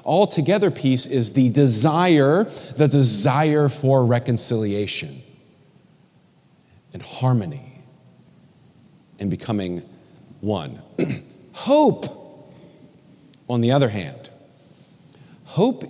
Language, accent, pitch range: English, American, 130-185 Hz